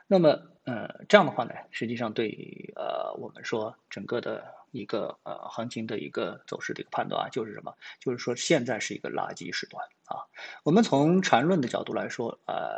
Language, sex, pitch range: Chinese, male, 125-205 Hz